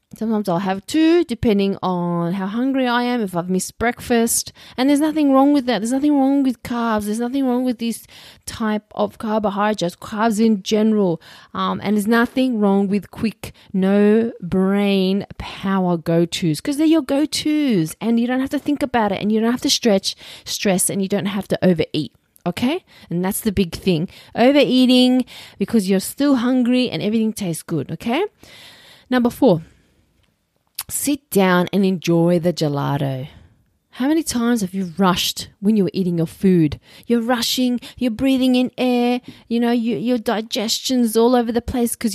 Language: English